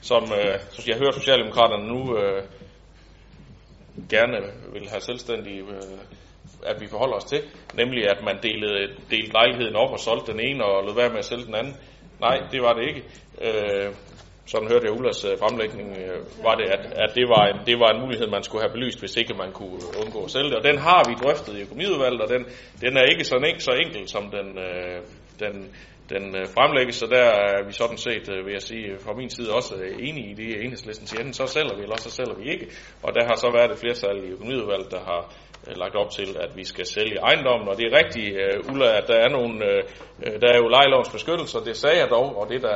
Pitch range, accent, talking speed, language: 100-125 Hz, native, 225 wpm, Danish